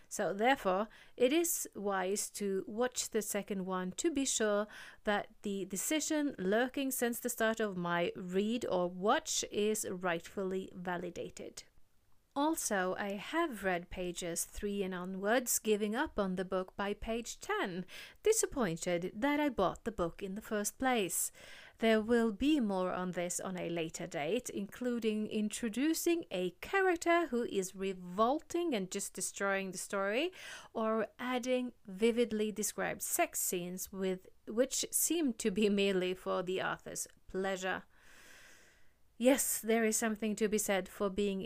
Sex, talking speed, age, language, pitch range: female, 145 wpm, 30-49, English, 190-245 Hz